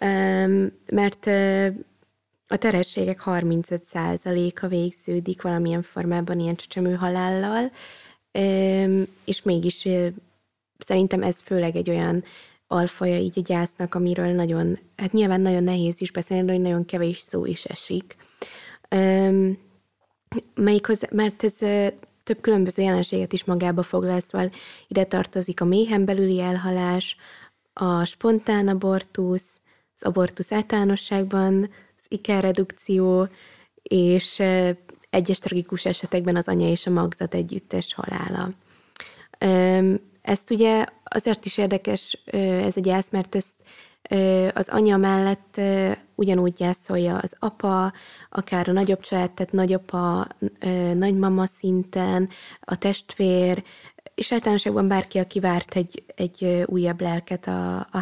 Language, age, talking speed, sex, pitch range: Hungarian, 20-39, 120 wpm, female, 180-195 Hz